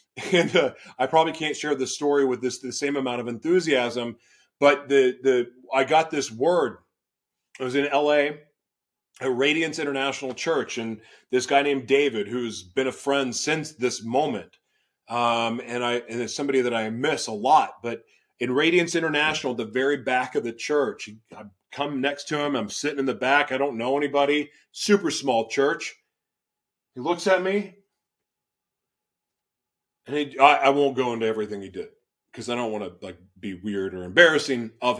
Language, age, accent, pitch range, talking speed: English, 30-49, American, 115-145 Hz, 180 wpm